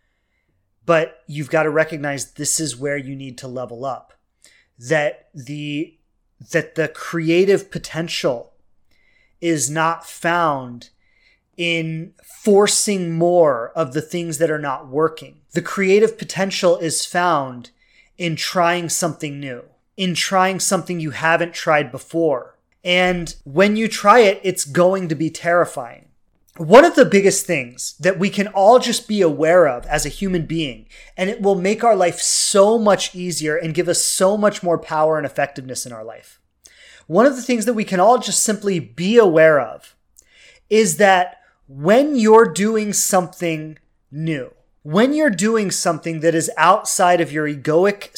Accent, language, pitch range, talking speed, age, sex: American, English, 155-195 Hz, 155 wpm, 30-49, male